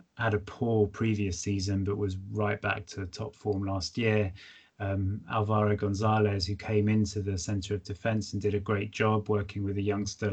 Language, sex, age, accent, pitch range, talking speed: English, male, 20-39, British, 100-115 Hz, 190 wpm